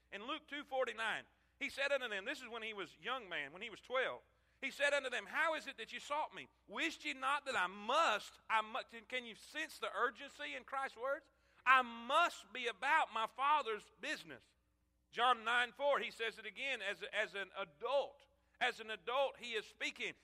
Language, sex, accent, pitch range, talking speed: English, male, American, 175-270 Hz, 210 wpm